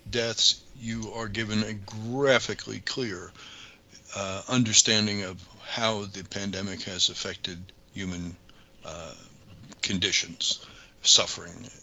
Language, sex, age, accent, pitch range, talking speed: English, male, 60-79, American, 95-115 Hz, 95 wpm